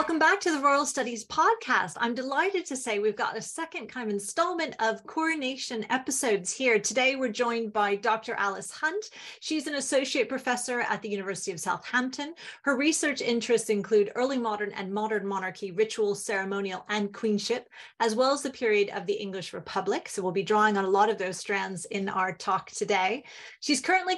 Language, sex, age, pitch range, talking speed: English, female, 30-49, 200-255 Hz, 190 wpm